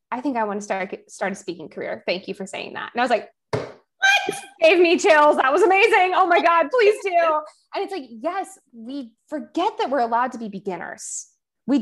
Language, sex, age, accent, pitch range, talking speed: English, female, 20-39, American, 200-275 Hz, 225 wpm